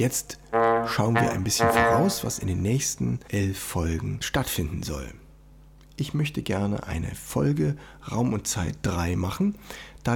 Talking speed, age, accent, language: 150 wpm, 60-79, German, German